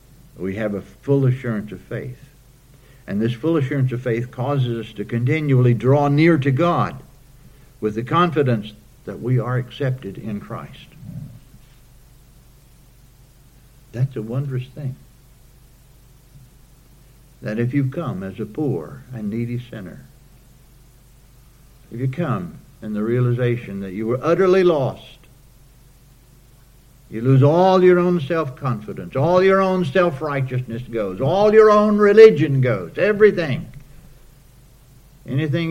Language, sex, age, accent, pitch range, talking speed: English, male, 60-79, American, 120-140 Hz, 125 wpm